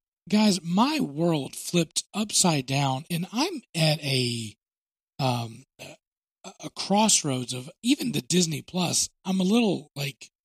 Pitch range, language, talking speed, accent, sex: 135-190 Hz, English, 130 wpm, American, male